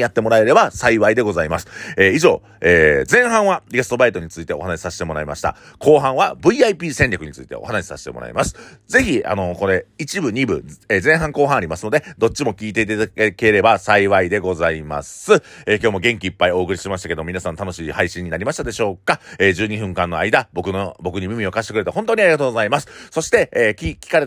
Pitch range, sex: 90-140 Hz, male